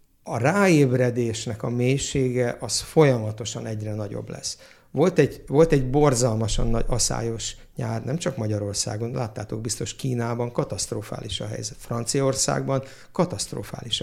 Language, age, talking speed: Hungarian, 60-79, 120 wpm